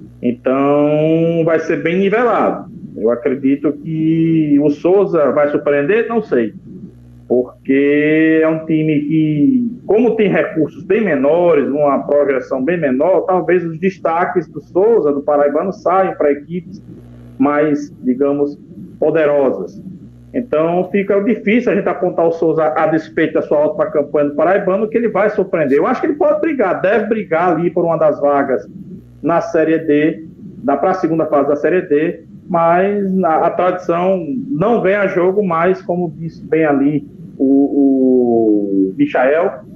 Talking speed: 150 wpm